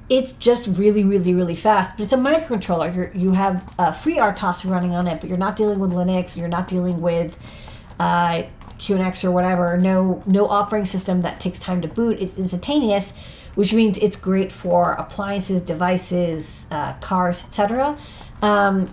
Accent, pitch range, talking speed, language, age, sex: American, 175-210 Hz, 180 wpm, English, 40-59, female